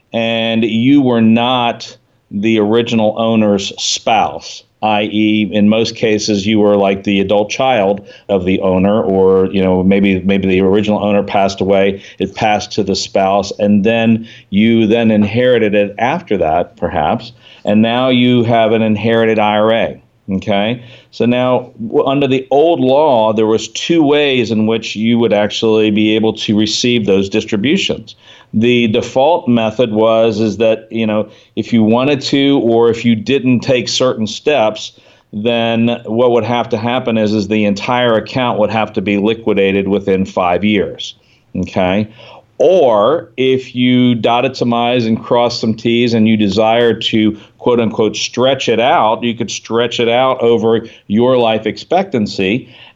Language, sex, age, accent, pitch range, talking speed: English, male, 50-69, American, 105-120 Hz, 160 wpm